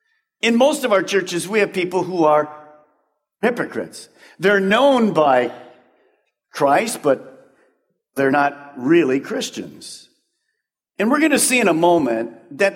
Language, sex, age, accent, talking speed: English, male, 50-69, American, 135 wpm